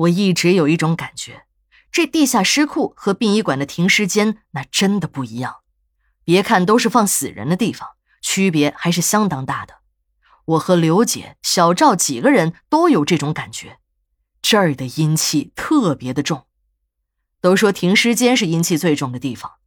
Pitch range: 145-240 Hz